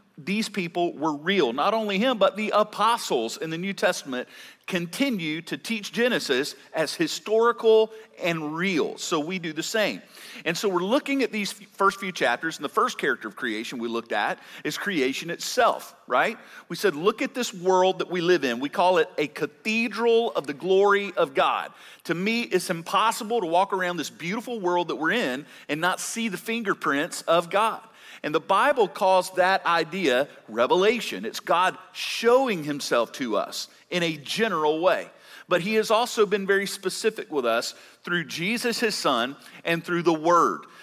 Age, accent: 40-59, American